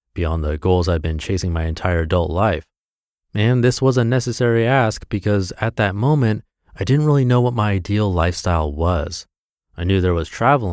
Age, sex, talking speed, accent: 30-49, male, 190 wpm, American